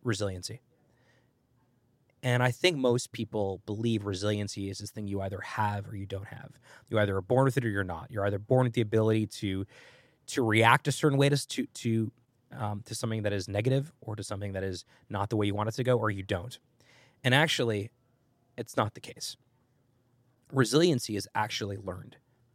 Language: English